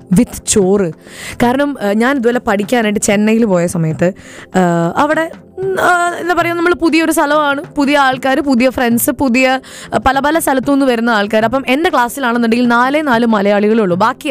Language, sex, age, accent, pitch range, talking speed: Malayalam, female, 20-39, native, 210-280 Hz, 135 wpm